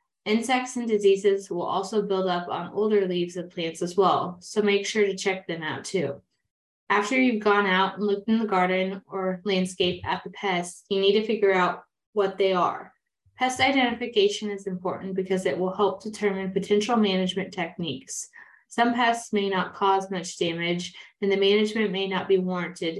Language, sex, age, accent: English, female, 20-39, American